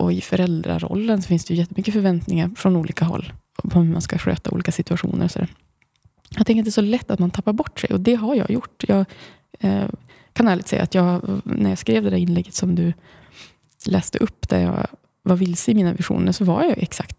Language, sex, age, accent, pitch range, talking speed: Swedish, female, 20-39, native, 165-195 Hz, 225 wpm